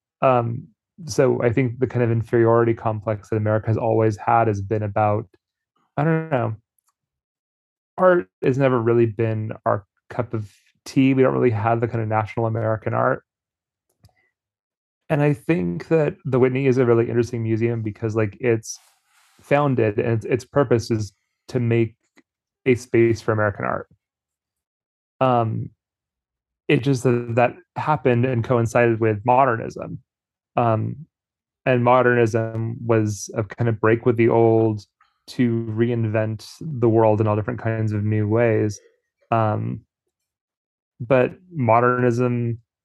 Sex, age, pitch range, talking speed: male, 30-49, 110-125 Hz, 140 wpm